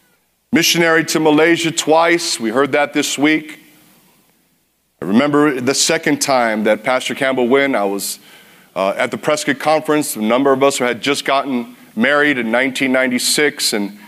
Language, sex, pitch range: English, male, 120-155 Hz